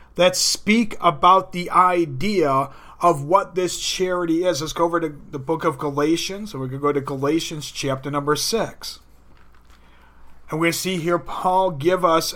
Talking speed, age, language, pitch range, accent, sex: 165 wpm, 40-59, English, 145-185 Hz, American, male